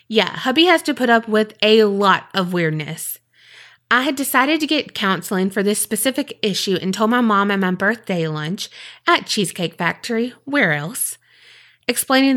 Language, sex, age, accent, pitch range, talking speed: English, female, 20-39, American, 190-240 Hz, 170 wpm